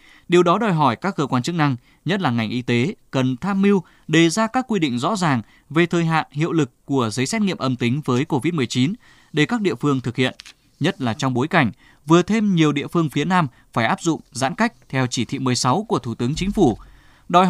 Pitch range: 130-175 Hz